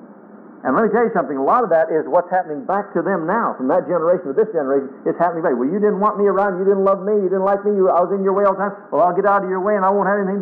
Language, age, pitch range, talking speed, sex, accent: English, 50-69, 165-220 Hz, 345 wpm, male, American